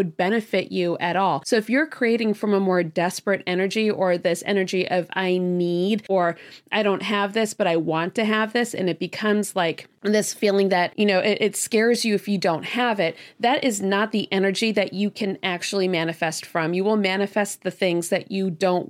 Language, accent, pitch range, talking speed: English, American, 190-245 Hz, 215 wpm